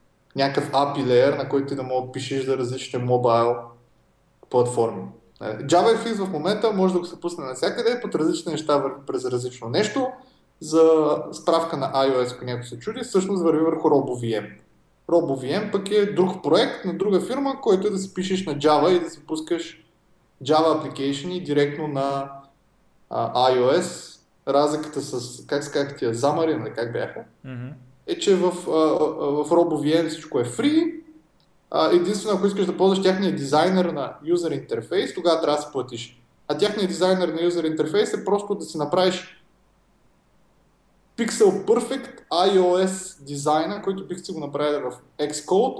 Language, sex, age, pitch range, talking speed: Bulgarian, male, 20-39, 140-185 Hz, 150 wpm